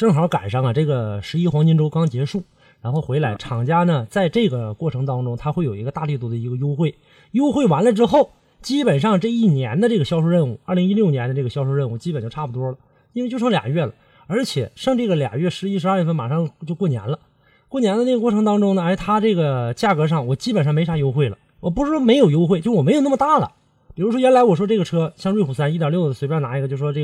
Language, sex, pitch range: Chinese, male, 140-210 Hz